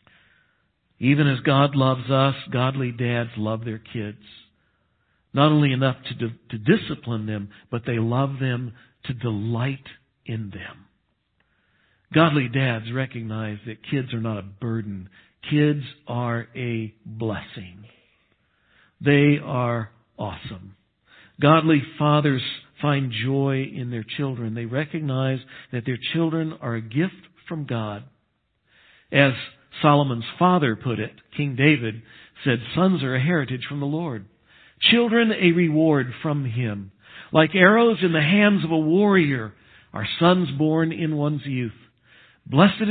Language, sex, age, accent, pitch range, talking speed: English, male, 60-79, American, 115-150 Hz, 130 wpm